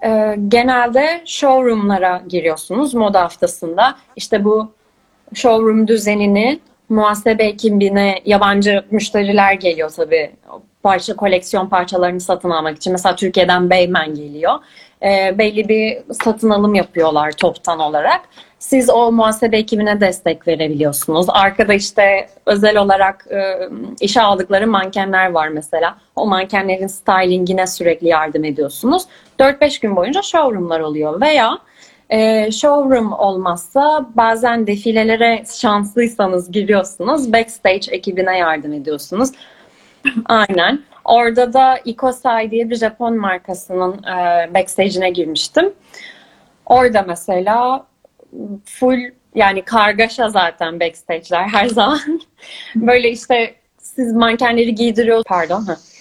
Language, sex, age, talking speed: Turkish, female, 30-49, 105 wpm